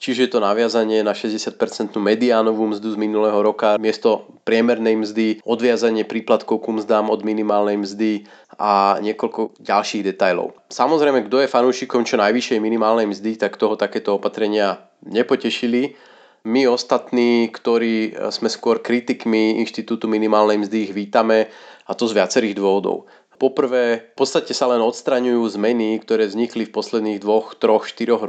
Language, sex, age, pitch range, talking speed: Slovak, male, 30-49, 110-120 Hz, 140 wpm